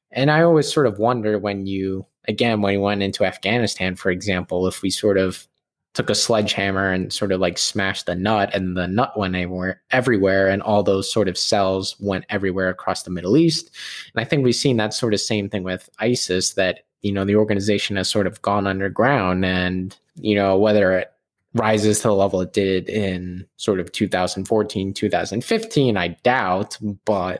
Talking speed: 195 wpm